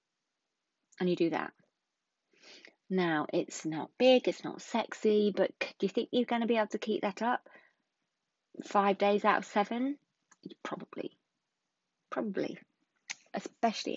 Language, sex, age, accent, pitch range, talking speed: English, female, 30-49, British, 170-220 Hz, 135 wpm